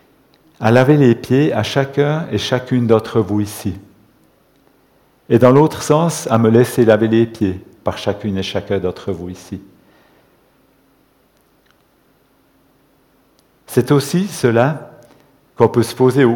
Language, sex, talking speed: French, male, 130 wpm